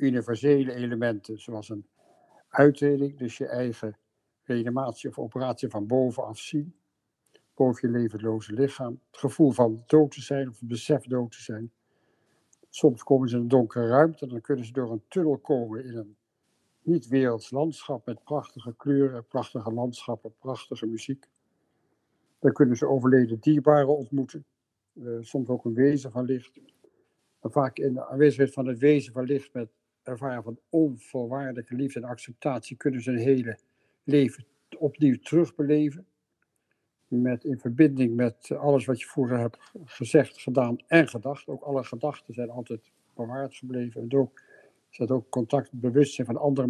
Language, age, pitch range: Dutch, 60-79, 120-140 Hz